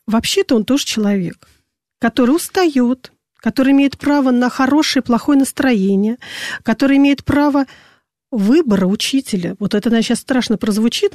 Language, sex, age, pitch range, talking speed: Russian, female, 40-59, 210-255 Hz, 135 wpm